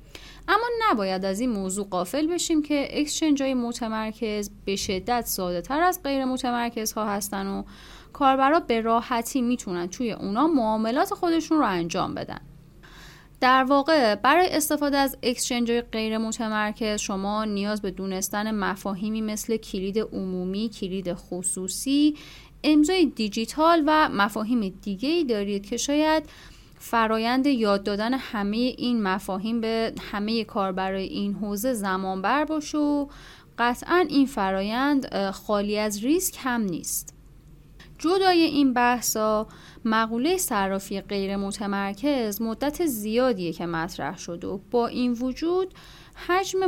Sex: female